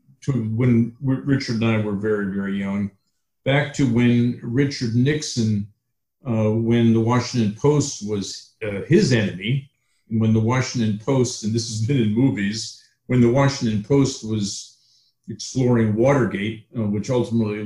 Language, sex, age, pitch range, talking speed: English, male, 50-69, 105-130 Hz, 150 wpm